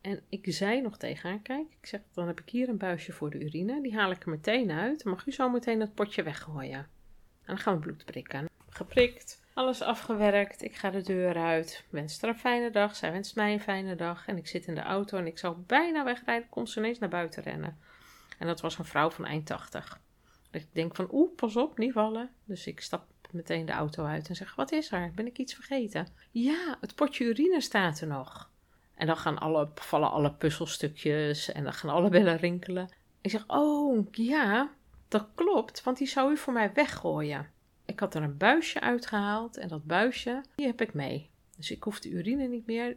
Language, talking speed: Dutch, 220 wpm